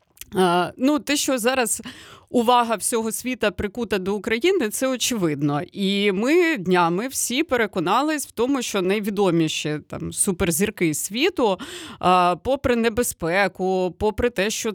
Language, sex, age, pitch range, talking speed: Ukrainian, female, 30-49, 190-250 Hz, 120 wpm